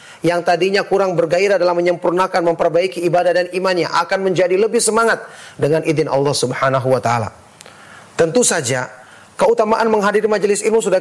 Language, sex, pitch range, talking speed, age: Indonesian, male, 160-210 Hz, 145 wpm, 40-59